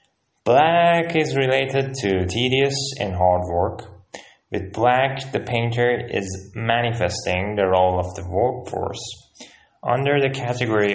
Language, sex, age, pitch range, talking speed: Persian, male, 20-39, 95-125 Hz, 120 wpm